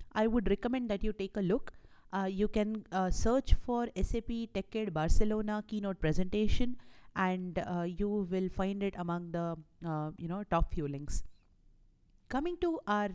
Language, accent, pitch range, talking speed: English, Indian, 180-230 Hz, 155 wpm